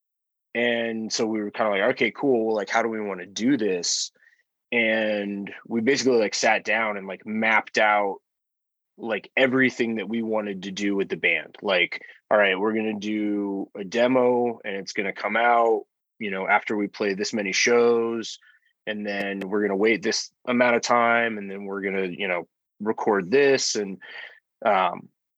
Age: 20-39